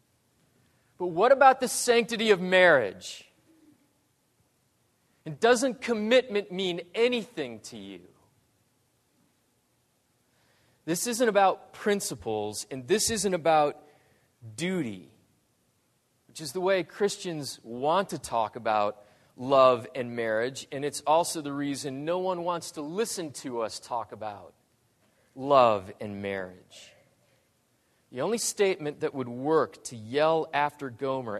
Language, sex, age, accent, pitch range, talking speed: English, male, 30-49, American, 120-180 Hz, 120 wpm